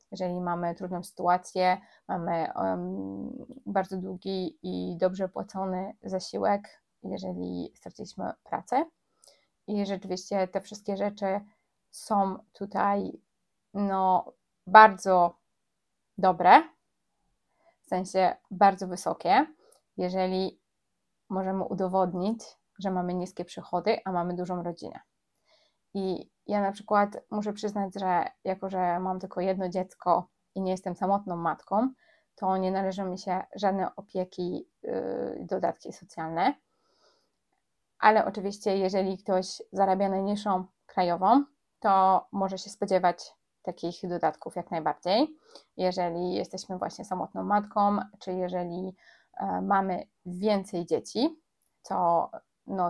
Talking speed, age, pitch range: 105 wpm, 20-39, 180-200 Hz